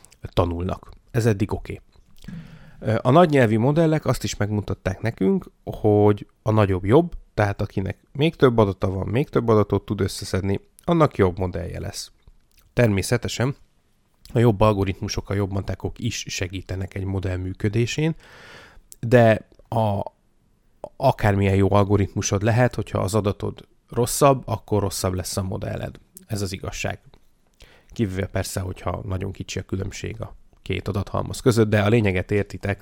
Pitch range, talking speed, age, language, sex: 95-120 Hz, 140 wpm, 30-49, Hungarian, male